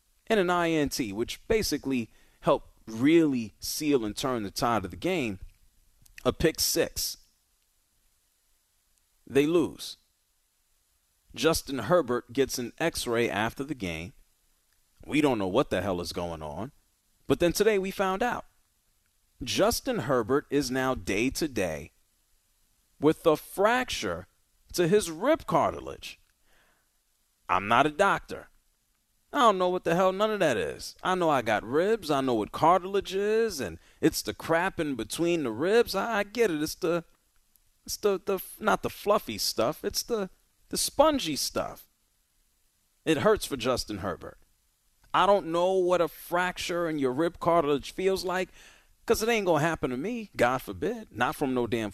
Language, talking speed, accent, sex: English, 155 wpm, American, male